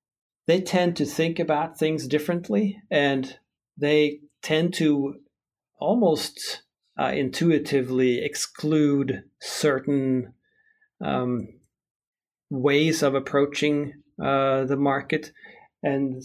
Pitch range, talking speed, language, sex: 135-155 Hz, 90 wpm, English, male